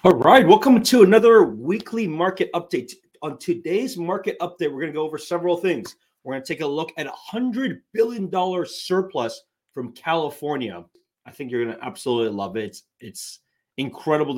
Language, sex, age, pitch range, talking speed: English, male, 30-49, 120-190 Hz, 180 wpm